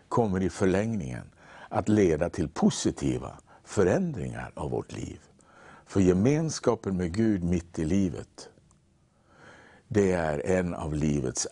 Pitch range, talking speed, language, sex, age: 85-110 Hz, 120 wpm, English, male, 60-79